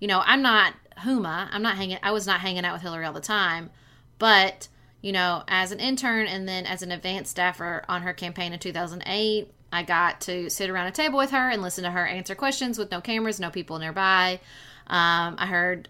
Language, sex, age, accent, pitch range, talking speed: English, female, 20-39, American, 170-210 Hz, 230 wpm